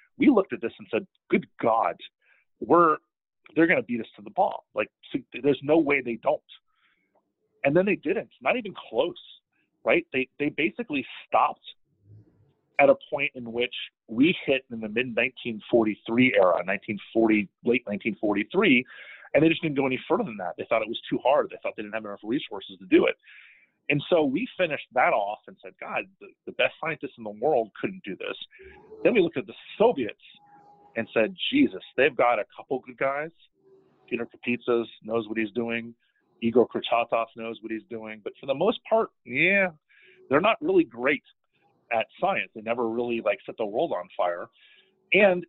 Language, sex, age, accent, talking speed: English, male, 30-49, American, 190 wpm